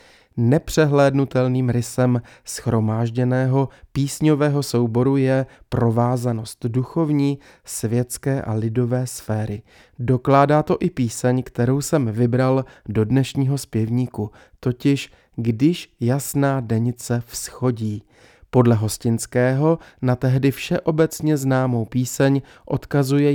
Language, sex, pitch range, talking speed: Czech, male, 120-140 Hz, 90 wpm